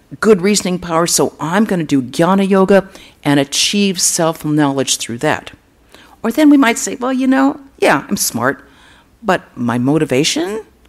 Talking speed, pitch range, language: 160 wpm, 140-195 Hz, English